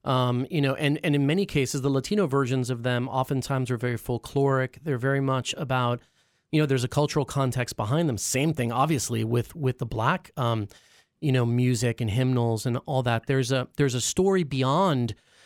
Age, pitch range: 30-49, 125-160 Hz